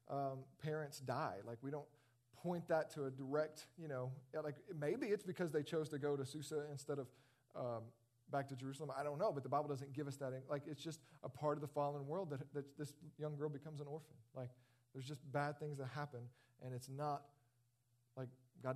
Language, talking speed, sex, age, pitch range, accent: English, 220 wpm, male, 40-59, 130-160 Hz, American